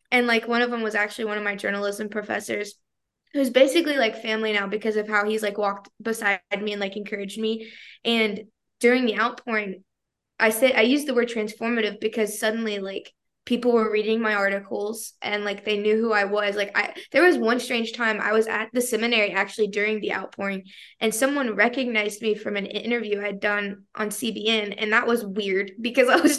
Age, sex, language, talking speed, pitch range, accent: 20-39, female, English, 200 wpm, 205-235 Hz, American